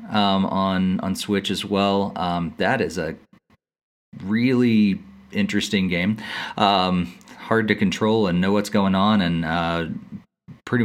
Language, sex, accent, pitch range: English, male, American, 90-105 Hz